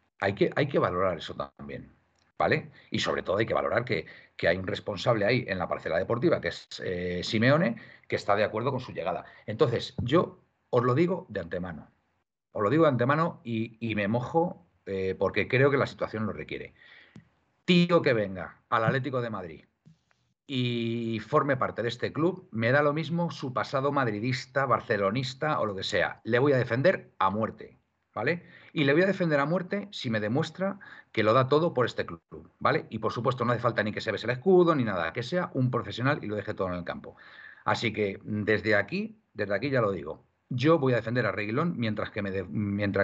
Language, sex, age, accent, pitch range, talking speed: Spanish, male, 50-69, Spanish, 110-160 Hz, 210 wpm